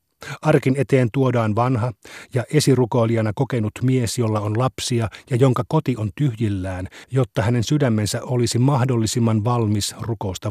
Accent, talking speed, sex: native, 130 wpm, male